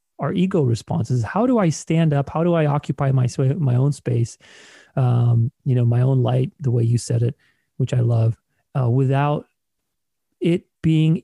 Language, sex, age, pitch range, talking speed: English, male, 30-49, 125-150 Hz, 180 wpm